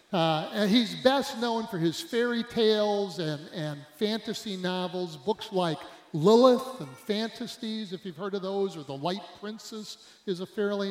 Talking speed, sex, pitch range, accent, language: 165 wpm, male, 165-220 Hz, American, English